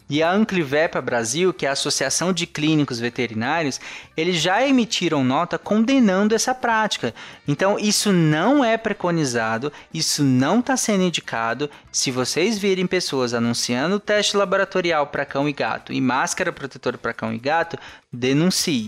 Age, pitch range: 20-39, 145-200 Hz